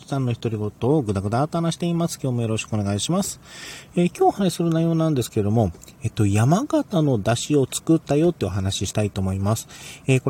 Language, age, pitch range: Japanese, 40-59, 100-150 Hz